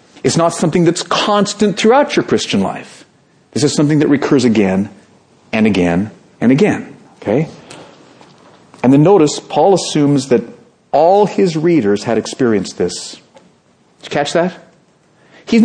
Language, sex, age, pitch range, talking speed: English, male, 40-59, 150-205 Hz, 140 wpm